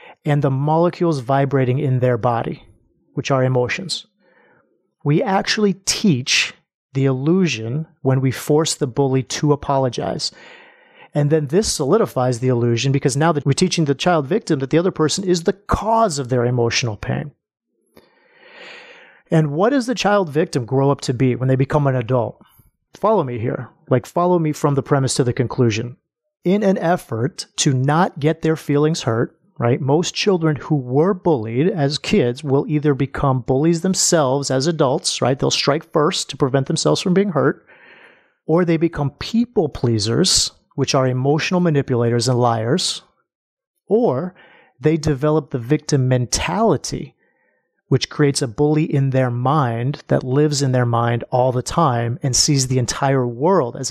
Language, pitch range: English, 130-175 Hz